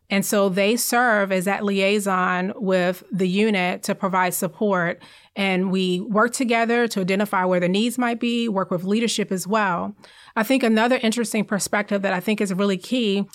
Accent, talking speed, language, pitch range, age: American, 180 wpm, English, 195-230 Hz, 30-49